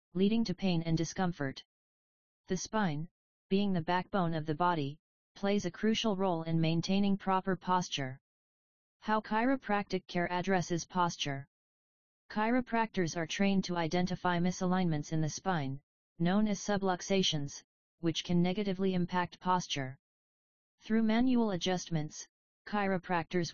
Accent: American